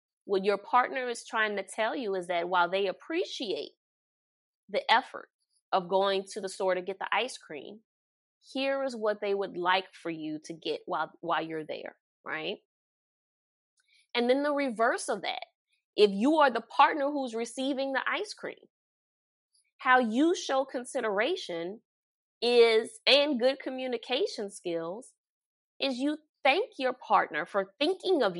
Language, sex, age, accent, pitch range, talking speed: English, female, 20-39, American, 200-280 Hz, 155 wpm